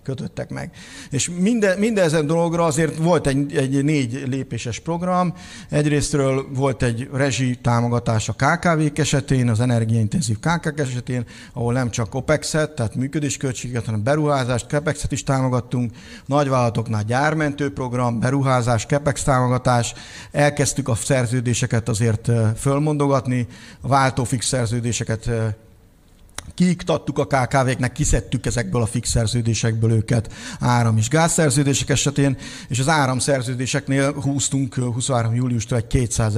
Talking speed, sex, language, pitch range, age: 120 wpm, male, Hungarian, 120-145 Hz, 60-79